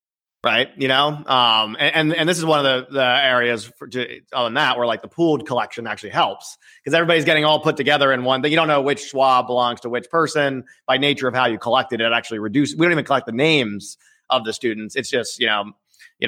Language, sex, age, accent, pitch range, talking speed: English, male, 30-49, American, 120-155 Hz, 235 wpm